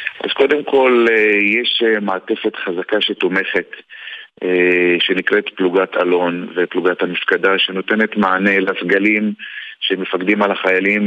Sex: male